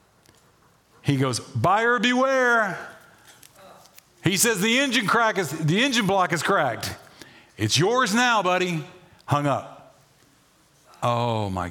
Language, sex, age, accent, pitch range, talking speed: English, male, 50-69, American, 145-210 Hz, 120 wpm